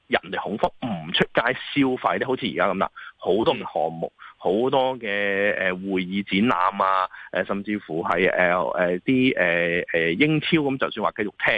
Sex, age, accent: male, 30-49, native